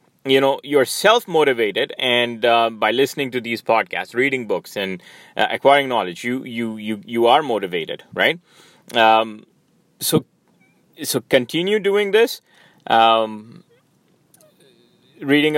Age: 30-49